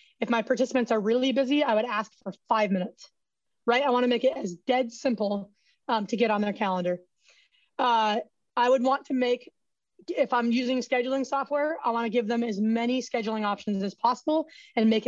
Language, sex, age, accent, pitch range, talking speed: English, female, 20-39, American, 220-270 Hz, 195 wpm